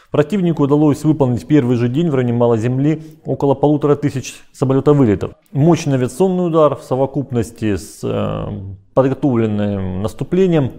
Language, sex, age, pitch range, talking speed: Russian, male, 30-49, 120-150 Hz, 120 wpm